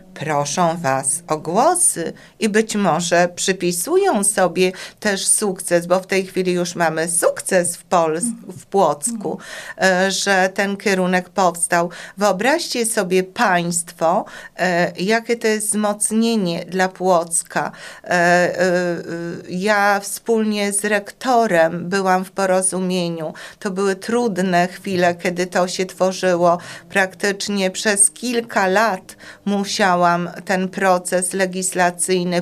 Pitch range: 180-210 Hz